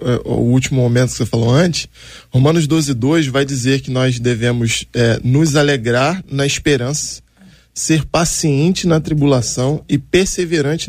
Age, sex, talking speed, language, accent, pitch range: 20-39, male, 145 wpm, Portuguese, Brazilian, 145-190 Hz